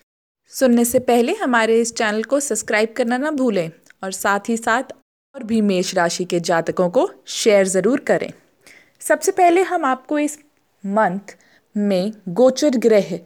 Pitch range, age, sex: 185-260 Hz, 20-39, female